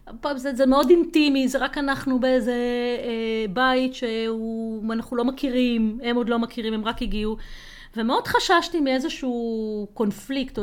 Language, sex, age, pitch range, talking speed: Hebrew, female, 30-49, 215-280 Hz, 140 wpm